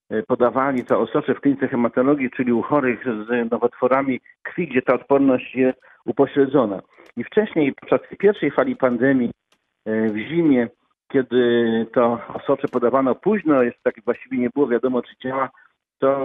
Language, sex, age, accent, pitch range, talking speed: Polish, male, 50-69, native, 120-140 Hz, 145 wpm